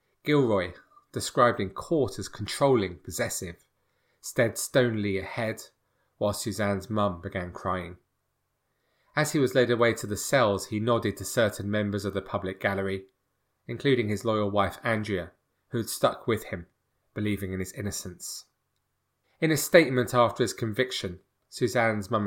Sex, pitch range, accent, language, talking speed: male, 100-120 Hz, British, English, 145 wpm